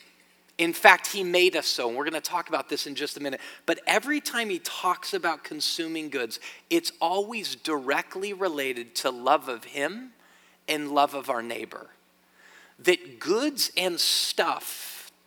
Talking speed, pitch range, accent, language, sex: 165 wpm, 145-225 Hz, American, English, male